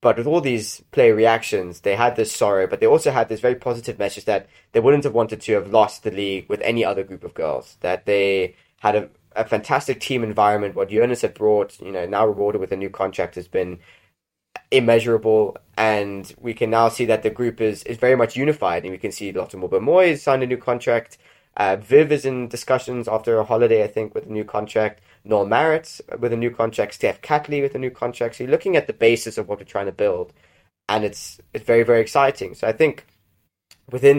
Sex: male